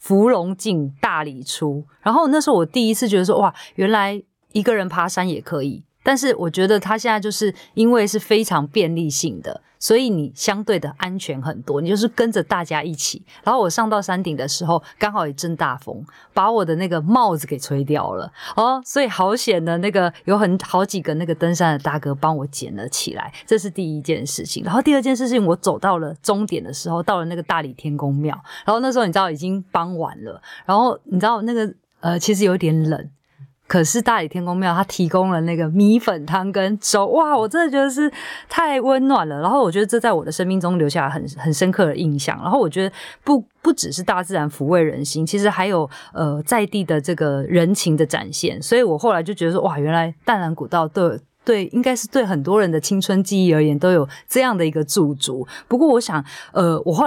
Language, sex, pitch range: Chinese, female, 160-215 Hz